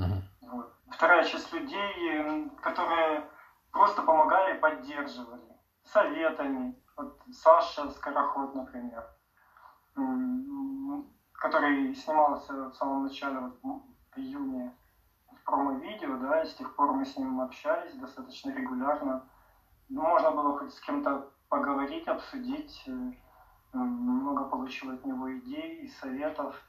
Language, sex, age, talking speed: Ukrainian, male, 20-39, 105 wpm